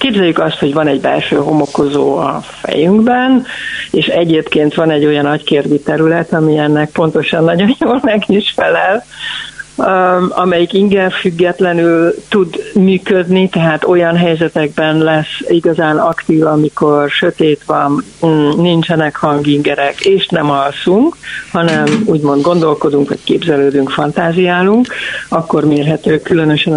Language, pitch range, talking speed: Hungarian, 155-200 Hz, 110 wpm